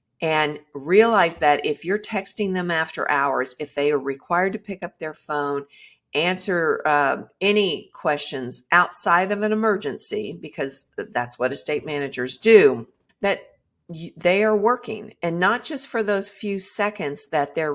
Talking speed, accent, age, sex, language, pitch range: 150 wpm, American, 50-69, female, English, 145-200 Hz